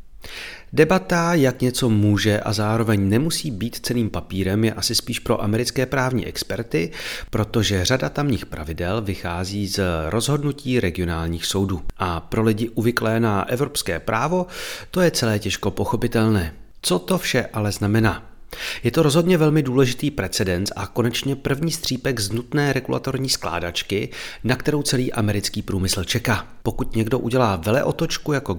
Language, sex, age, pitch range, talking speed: Czech, male, 30-49, 95-130 Hz, 145 wpm